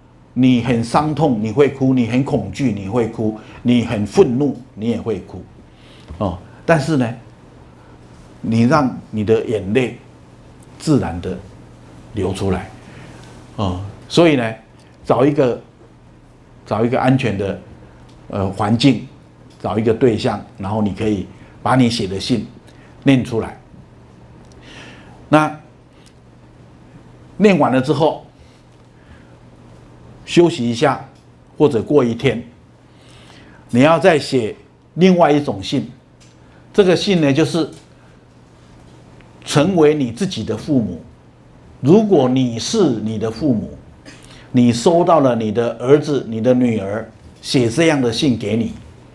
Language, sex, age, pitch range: Chinese, male, 50-69, 100-135 Hz